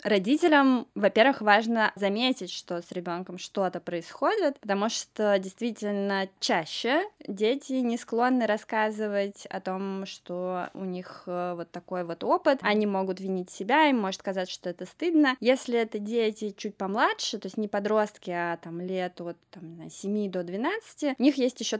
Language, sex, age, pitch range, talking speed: Russian, female, 20-39, 190-230 Hz, 160 wpm